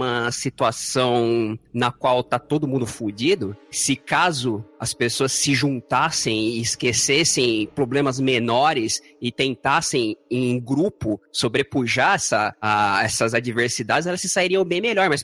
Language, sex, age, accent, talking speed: Portuguese, male, 20-39, Brazilian, 130 wpm